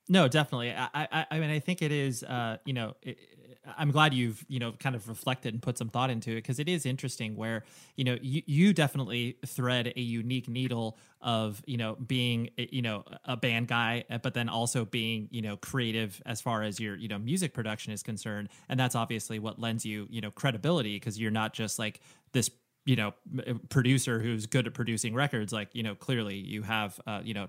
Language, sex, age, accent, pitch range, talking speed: English, male, 20-39, American, 110-130 Hz, 225 wpm